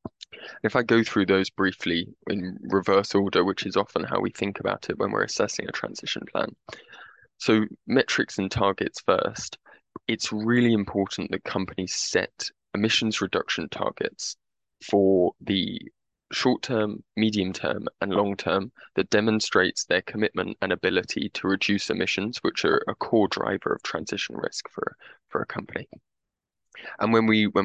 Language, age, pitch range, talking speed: English, 20-39, 95-110 Hz, 155 wpm